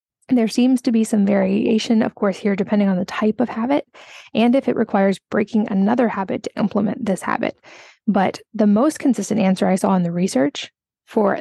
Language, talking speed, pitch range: English, 195 wpm, 195-240 Hz